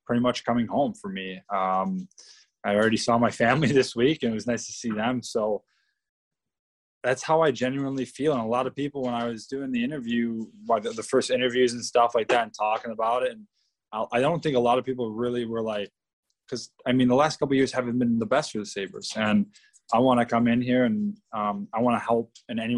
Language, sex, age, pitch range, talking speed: English, male, 20-39, 110-130 Hz, 230 wpm